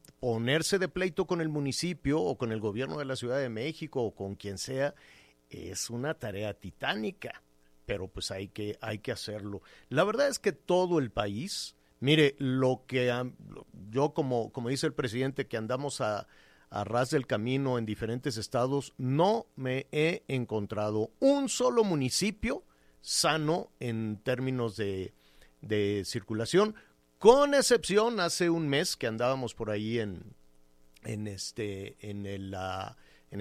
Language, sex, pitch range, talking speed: Spanish, male, 105-145 Hz, 155 wpm